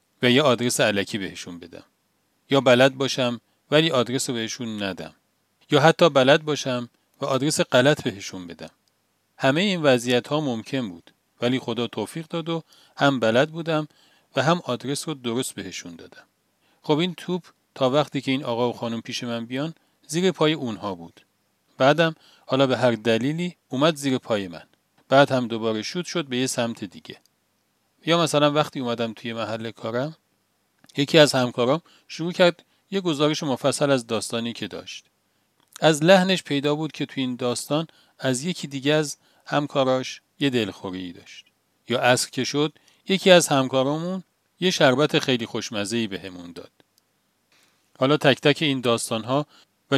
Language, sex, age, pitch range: Persian, male, 40-59, 115-150 Hz